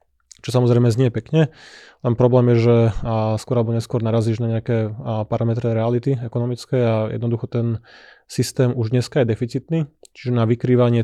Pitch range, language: 115-125 Hz, Slovak